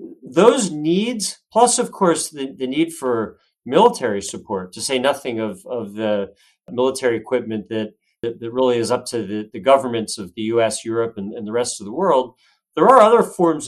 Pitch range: 115-160 Hz